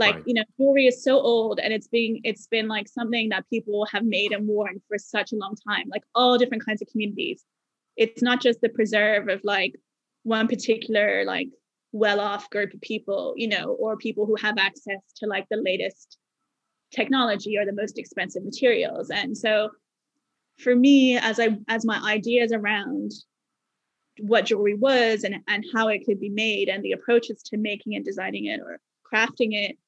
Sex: female